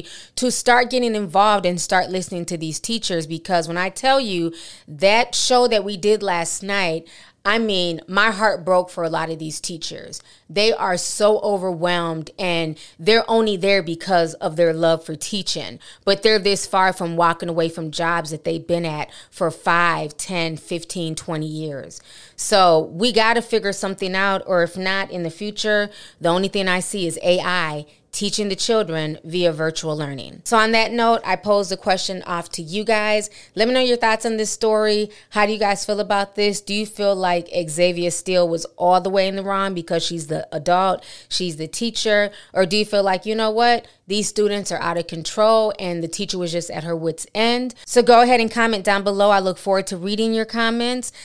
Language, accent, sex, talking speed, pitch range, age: English, American, female, 205 wpm, 170-210 Hz, 30-49